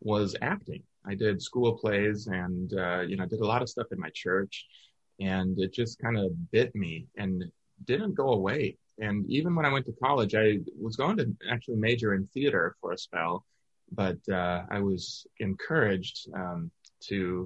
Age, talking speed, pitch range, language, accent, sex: 30-49, 190 wpm, 95-120 Hz, English, American, male